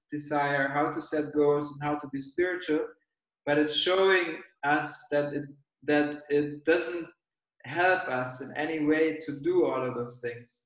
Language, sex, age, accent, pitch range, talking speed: English, male, 20-39, German, 145-170 Hz, 170 wpm